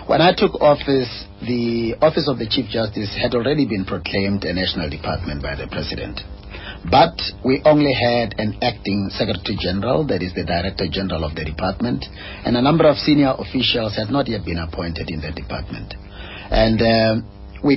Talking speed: 180 wpm